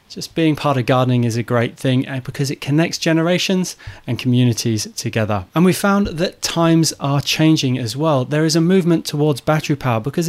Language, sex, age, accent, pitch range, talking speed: English, male, 30-49, British, 125-170 Hz, 190 wpm